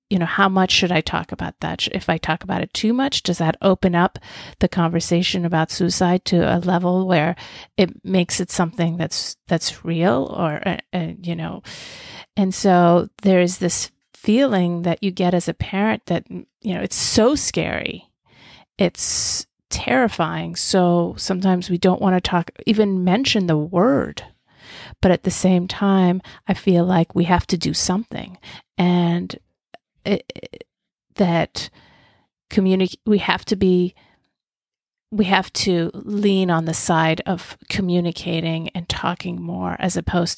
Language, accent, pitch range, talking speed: English, American, 170-195 Hz, 160 wpm